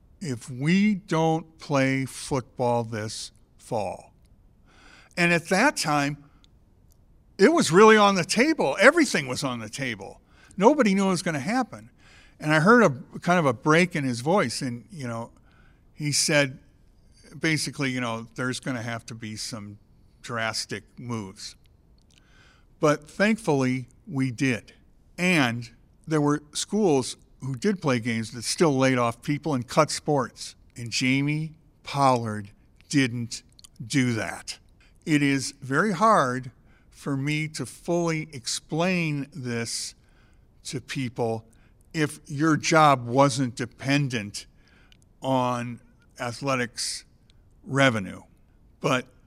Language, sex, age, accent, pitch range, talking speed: English, male, 60-79, American, 120-155 Hz, 125 wpm